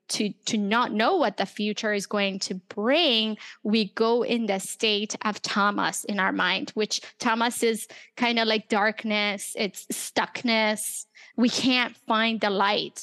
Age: 20-39